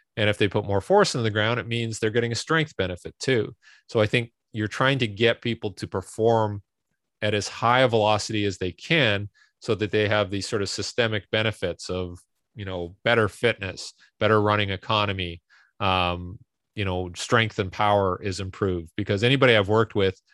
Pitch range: 95-110 Hz